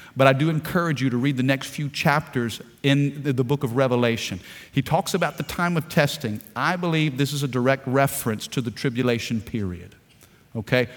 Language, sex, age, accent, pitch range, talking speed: English, male, 50-69, American, 130-165 Hz, 190 wpm